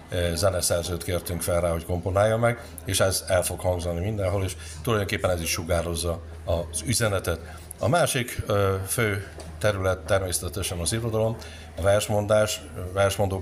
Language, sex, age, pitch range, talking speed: Hungarian, male, 60-79, 85-105 Hz, 135 wpm